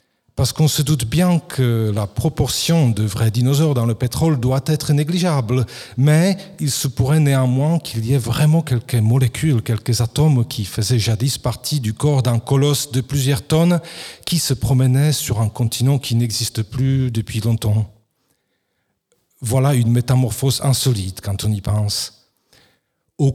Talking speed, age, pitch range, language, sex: 155 wpm, 40-59, 115-150 Hz, French, male